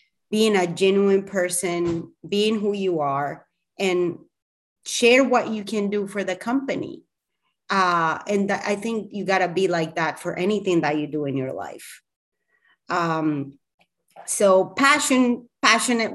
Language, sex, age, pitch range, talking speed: English, female, 30-49, 165-205 Hz, 145 wpm